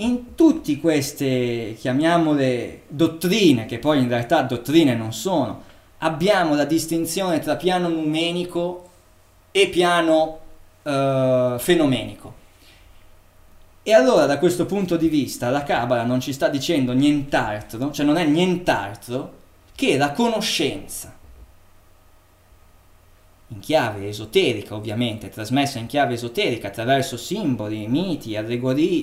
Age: 20-39